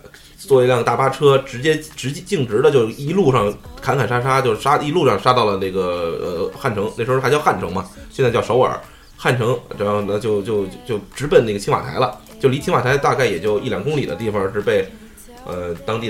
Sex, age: male, 20-39